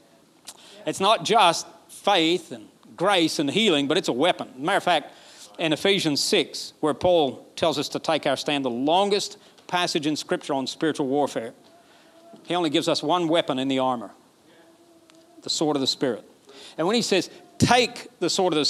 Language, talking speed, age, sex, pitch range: English, 190 wpm, 40-59, male, 150-200 Hz